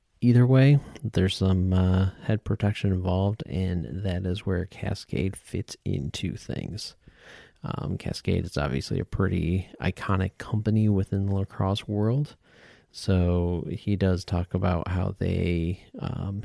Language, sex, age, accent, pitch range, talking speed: English, male, 40-59, American, 90-105 Hz, 130 wpm